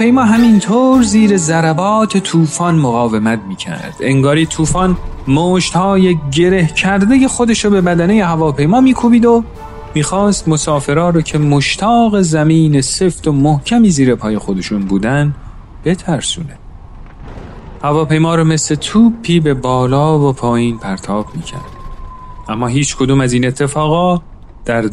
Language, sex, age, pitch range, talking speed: Persian, male, 40-59, 130-180 Hz, 120 wpm